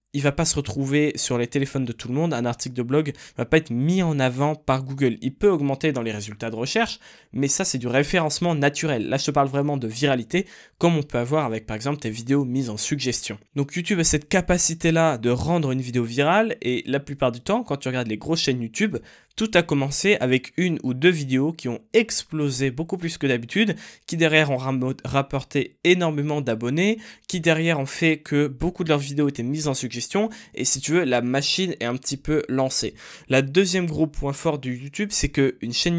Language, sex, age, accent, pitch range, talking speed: French, male, 20-39, French, 130-165 Hz, 230 wpm